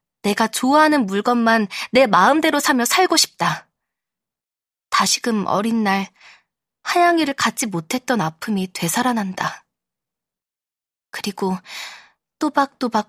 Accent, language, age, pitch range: native, Korean, 20-39, 180-245 Hz